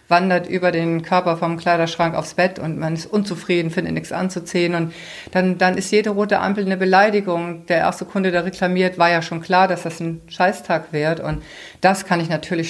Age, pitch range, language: 50-69, 160-190 Hz, German